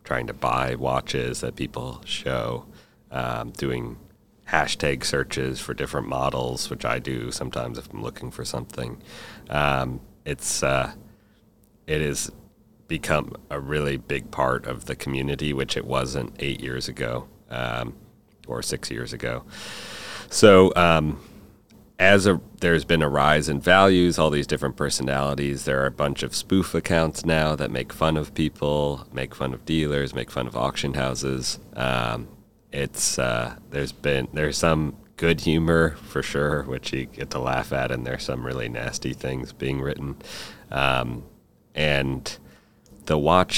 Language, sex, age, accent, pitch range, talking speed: English, male, 30-49, American, 65-75 Hz, 155 wpm